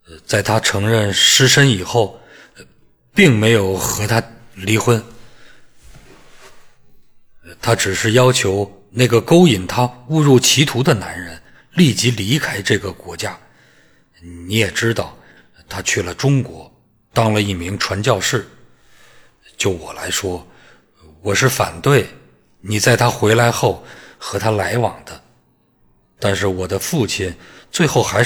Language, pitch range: Chinese, 95-125 Hz